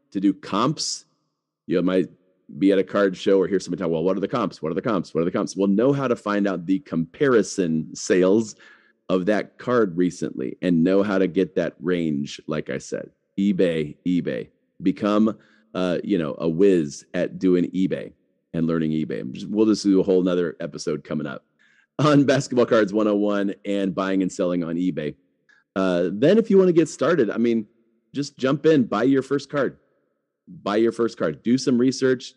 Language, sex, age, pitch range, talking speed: English, male, 40-59, 90-120 Hz, 205 wpm